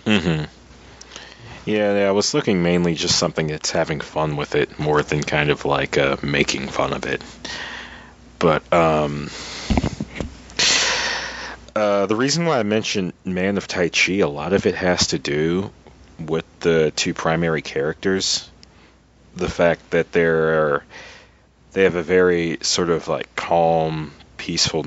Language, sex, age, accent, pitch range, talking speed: English, male, 30-49, American, 75-90 Hz, 150 wpm